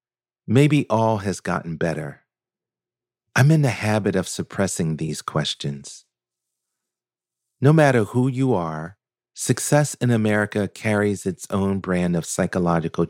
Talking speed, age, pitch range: 125 wpm, 40-59, 85-120 Hz